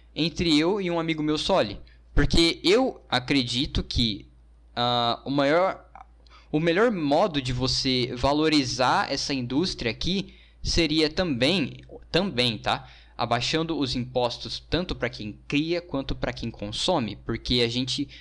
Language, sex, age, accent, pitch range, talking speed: Portuguese, male, 10-29, Brazilian, 115-150 Hz, 135 wpm